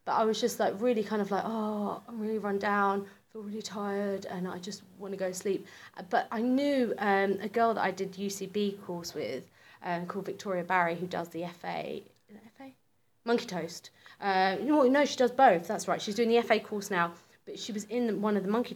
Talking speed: 235 wpm